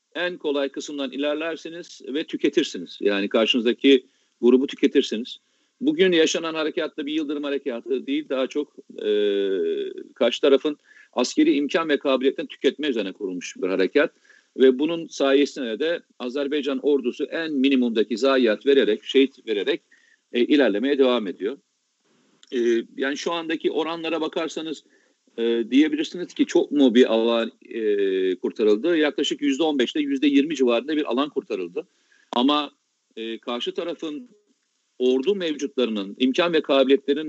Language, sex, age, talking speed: Turkish, male, 50-69, 130 wpm